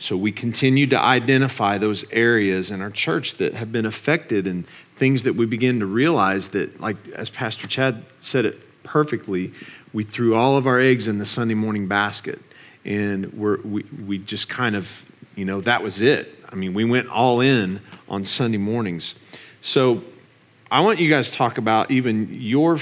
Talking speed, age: 185 wpm, 40-59